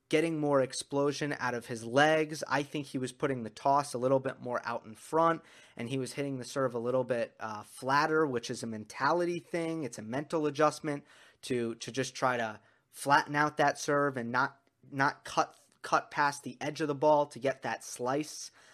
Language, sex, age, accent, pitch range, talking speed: English, male, 20-39, American, 130-155 Hz, 210 wpm